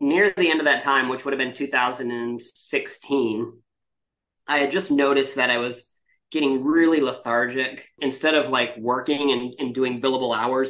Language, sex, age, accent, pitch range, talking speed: English, male, 30-49, American, 125-145 Hz, 170 wpm